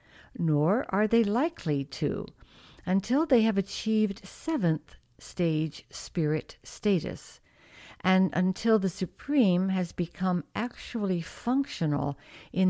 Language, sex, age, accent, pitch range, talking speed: English, female, 60-79, American, 165-215 Hz, 105 wpm